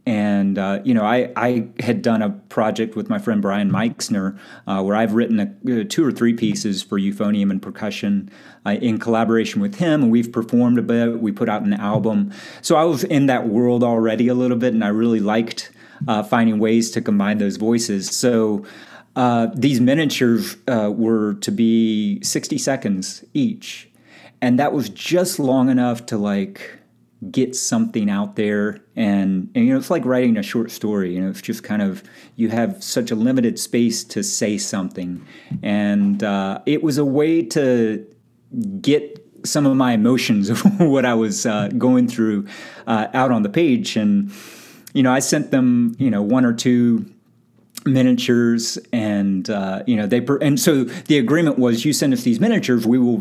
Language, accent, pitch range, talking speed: English, American, 110-180 Hz, 185 wpm